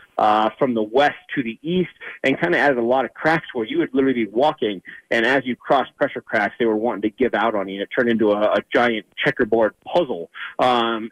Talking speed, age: 250 wpm, 30-49